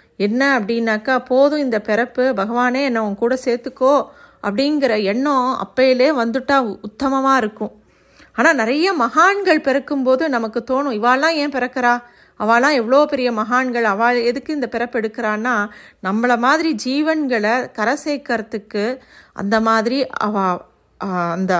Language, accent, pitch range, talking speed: Tamil, native, 215-275 Hz, 110 wpm